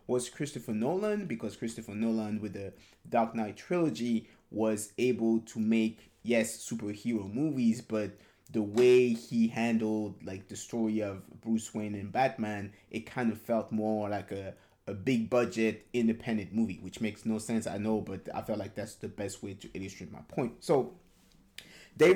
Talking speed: 170 wpm